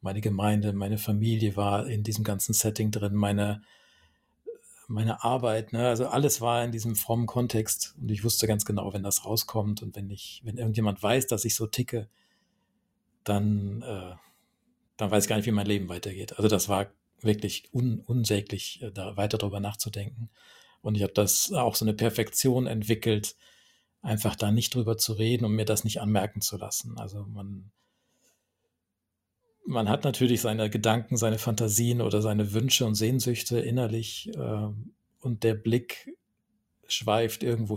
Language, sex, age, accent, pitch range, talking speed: German, male, 40-59, German, 100-115 Hz, 165 wpm